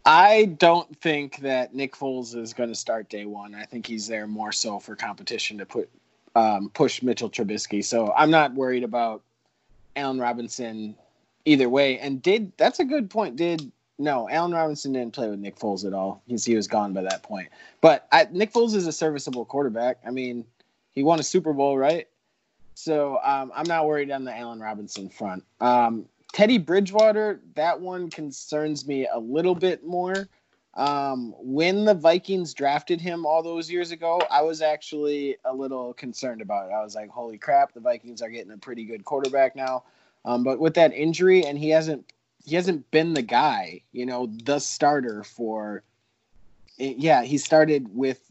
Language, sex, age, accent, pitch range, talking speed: English, male, 30-49, American, 115-160 Hz, 185 wpm